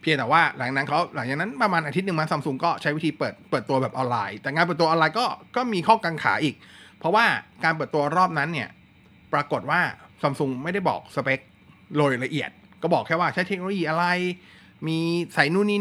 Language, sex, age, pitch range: Thai, male, 20-39, 130-170 Hz